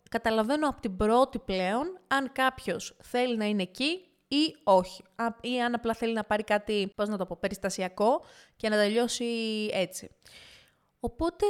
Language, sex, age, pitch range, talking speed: Greek, female, 20-39, 195-260 Hz, 160 wpm